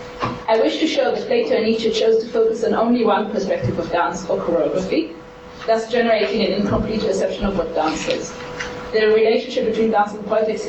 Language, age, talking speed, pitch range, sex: English, 20-39, 190 wpm, 190-230 Hz, female